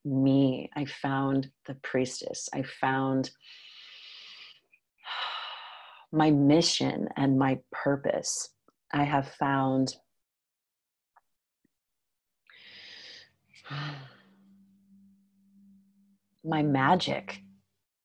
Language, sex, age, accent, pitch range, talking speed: English, female, 30-49, American, 140-160 Hz, 55 wpm